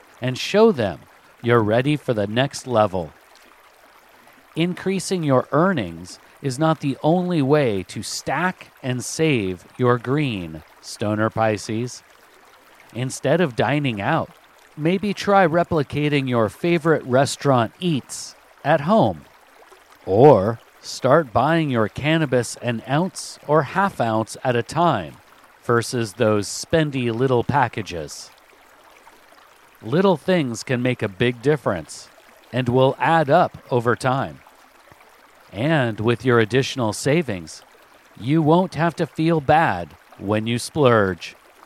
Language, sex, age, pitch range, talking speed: English, male, 50-69, 110-155 Hz, 120 wpm